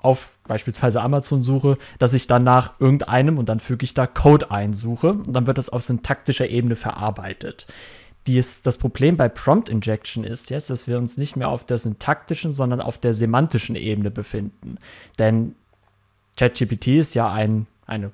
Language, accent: German, German